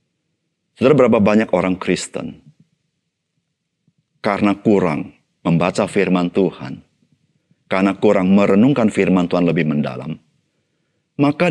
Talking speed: 95 wpm